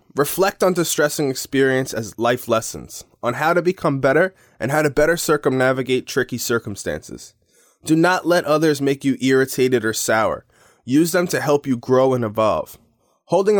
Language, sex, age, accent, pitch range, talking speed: English, male, 20-39, American, 120-155 Hz, 165 wpm